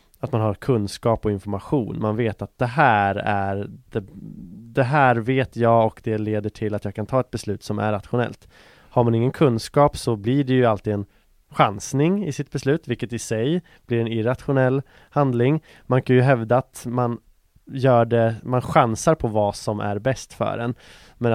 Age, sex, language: 20-39, male, English